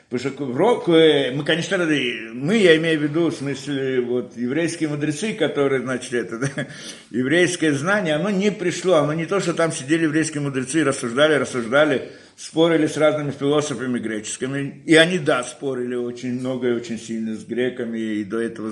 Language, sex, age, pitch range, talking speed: Russian, male, 60-79, 135-175 Hz, 170 wpm